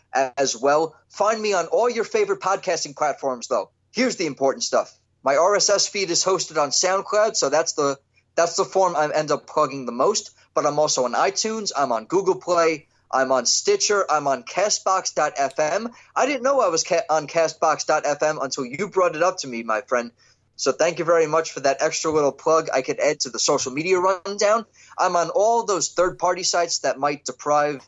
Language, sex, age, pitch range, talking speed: English, male, 20-39, 135-175 Hz, 200 wpm